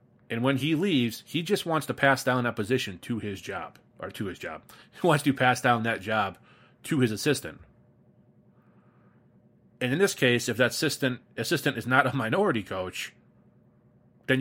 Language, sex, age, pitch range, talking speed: English, male, 30-49, 105-130 Hz, 180 wpm